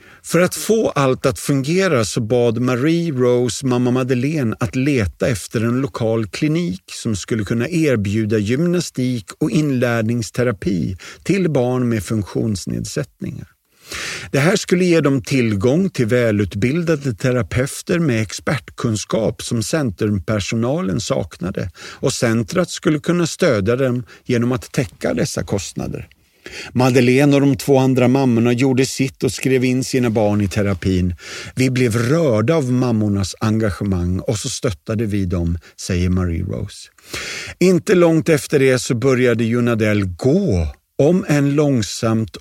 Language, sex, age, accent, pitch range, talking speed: Swedish, male, 50-69, native, 110-145 Hz, 135 wpm